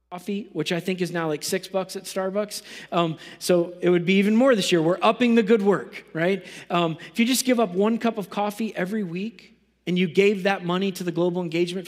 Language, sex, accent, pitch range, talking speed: English, male, American, 155-200 Hz, 235 wpm